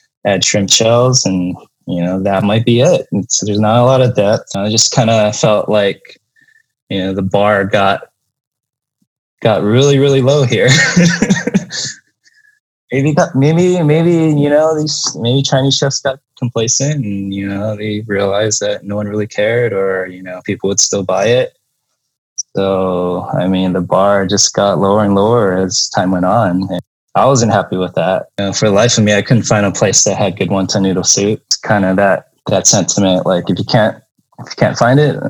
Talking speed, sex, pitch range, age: 195 wpm, male, 100-130 Hz, 20-39